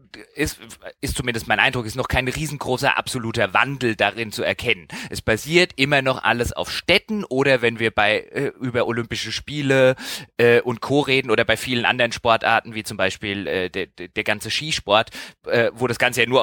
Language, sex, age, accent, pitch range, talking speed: German, male, 30-49, German, 115-135 Hz, 195 wpm